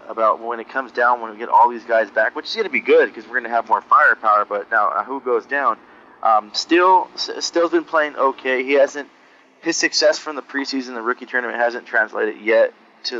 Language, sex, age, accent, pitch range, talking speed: English, male, 20-39, American, 110-160 Hz, 235 wpm